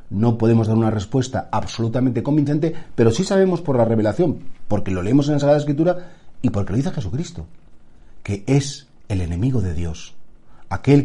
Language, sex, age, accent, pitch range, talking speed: Spanish, male, 40-59, Spanish, 100-145 Hz, 175 wpm